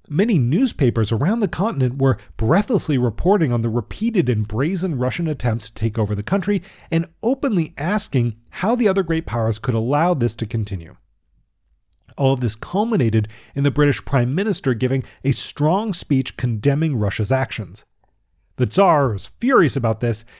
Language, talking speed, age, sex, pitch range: English, 160 wpm, 30-49, male, 110-160 Hz